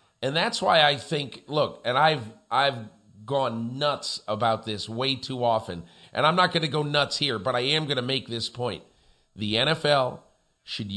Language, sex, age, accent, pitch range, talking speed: English, male, 50-69, American, 115-155 Hz, 190 wpm